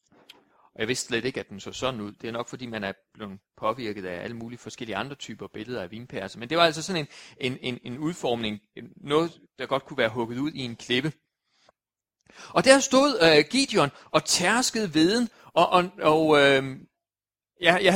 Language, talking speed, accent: Danish, 205 wpm, native